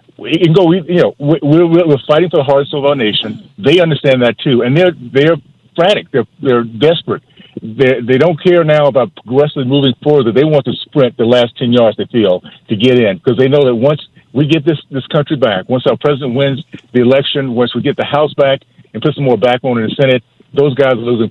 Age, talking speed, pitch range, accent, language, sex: 50-69, 235 wpm, 120-145 Hz, American, English, male